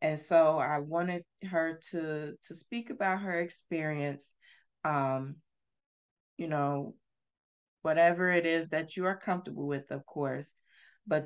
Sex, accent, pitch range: female, American, 145-180 Hz